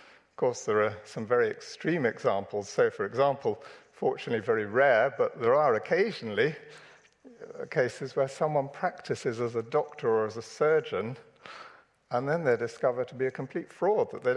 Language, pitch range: English, 115-175 Hz